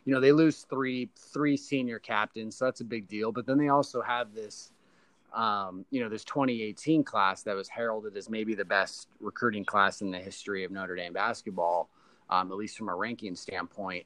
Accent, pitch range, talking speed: American, 95-110 Hz, 205 wpm